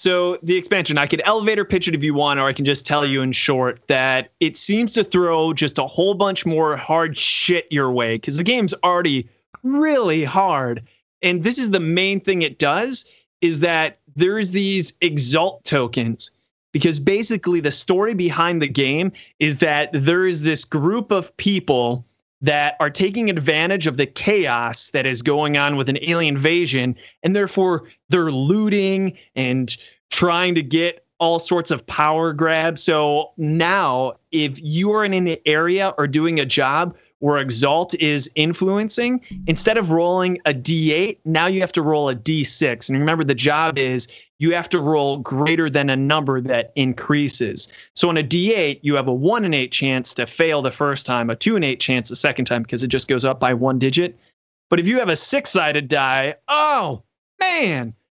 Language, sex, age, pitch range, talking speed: English, male, 30-49, 140-180 Hz, 185 wpm